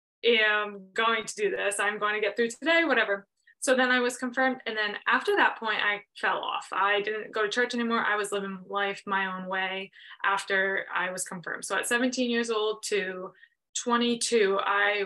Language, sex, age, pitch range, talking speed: English, female, 20-39, 195-235 Hz, 200 wpm